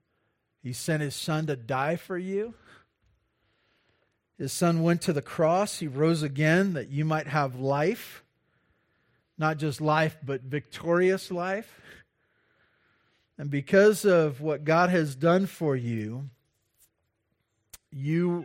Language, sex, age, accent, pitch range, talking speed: English, male, 40-59, American, 125-160 Hz, 125 wpm